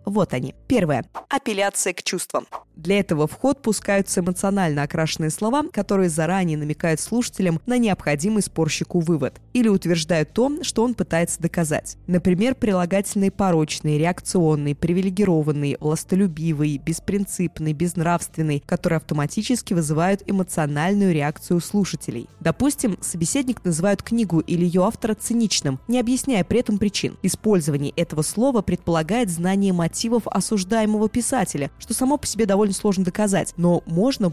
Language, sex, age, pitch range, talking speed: Russian, female, 20-39, 170-220 Hz, 125 wpm